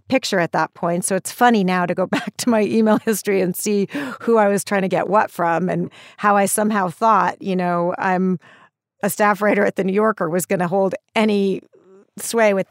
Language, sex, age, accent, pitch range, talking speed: English, female, 40-59, American, 175-215 Hz, 220 wpm